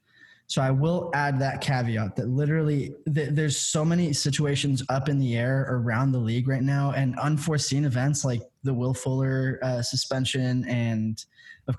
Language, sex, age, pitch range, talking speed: English, male, 10-29, 120-145 Hz, 165 wpm